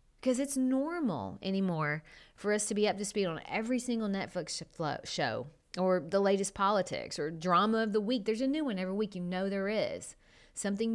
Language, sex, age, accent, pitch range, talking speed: English, female, 30-49, American, 175-245 Hz, 195 wpm